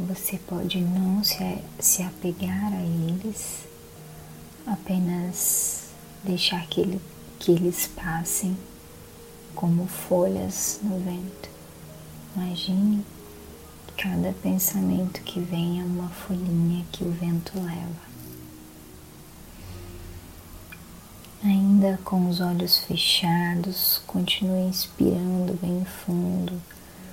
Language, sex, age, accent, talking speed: Portuguese, female, 20-39, Brazilian, 85 wpm